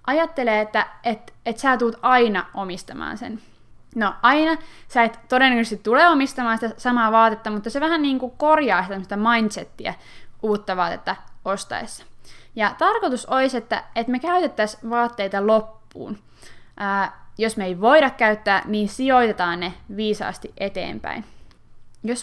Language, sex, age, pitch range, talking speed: Finnish, female, 20-39, 195-250 Hz, 125 wpm